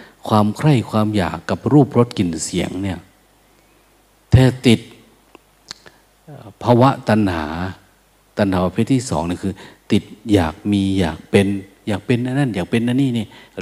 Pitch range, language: 95-120 Hz, Thai